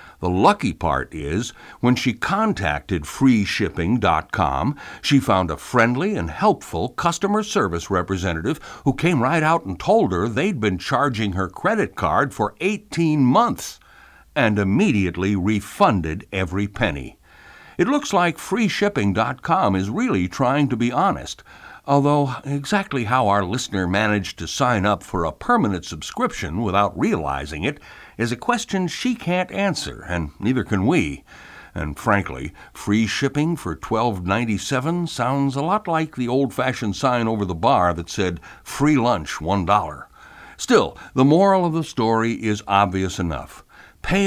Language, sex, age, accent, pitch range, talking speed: English, male, 60-79, American, 95-145 Hz, 145 wpm